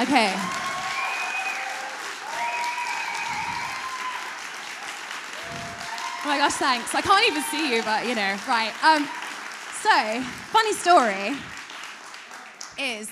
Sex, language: female, English